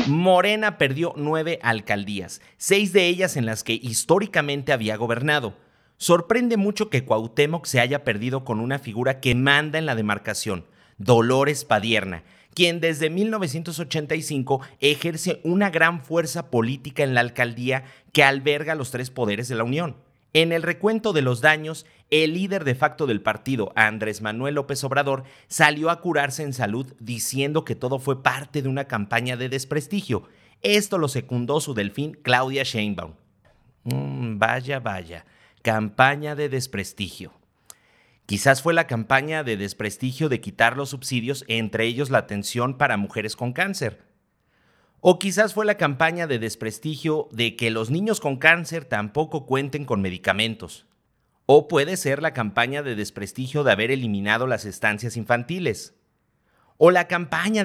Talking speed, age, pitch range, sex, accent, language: 150 wpm, 40-59, 115-155 Hz, male, Mexican, Spanish